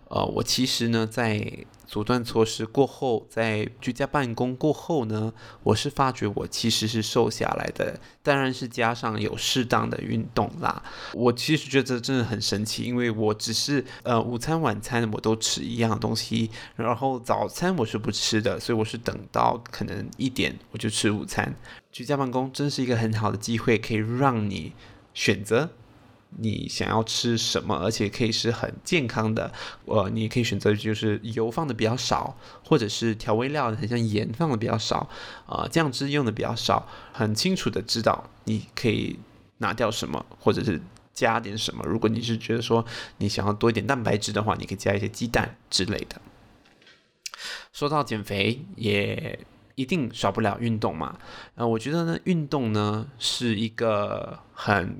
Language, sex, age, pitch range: Chinese, male, 20-39, 110-125 Hz